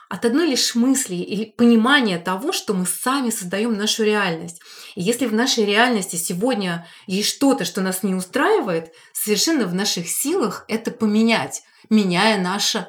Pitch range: 185-235 Hz